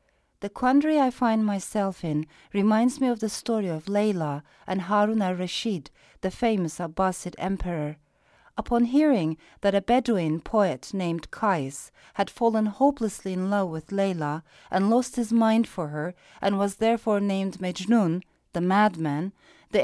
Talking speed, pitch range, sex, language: 150 wpm, 175-235 Hz, female, English